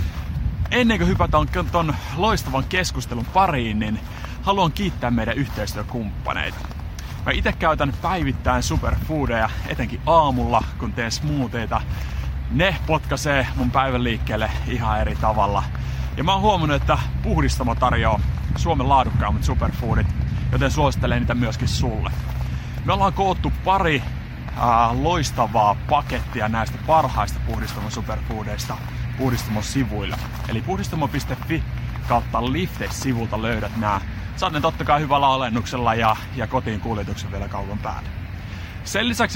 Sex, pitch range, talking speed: male, 100-130 Hz, 115 wpm